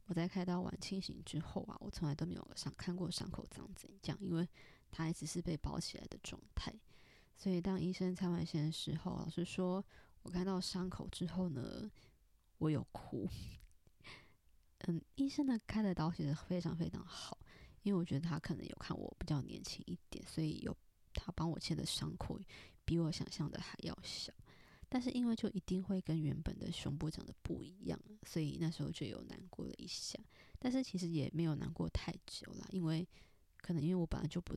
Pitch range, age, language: 165-190 Hz, 20-39, Chinese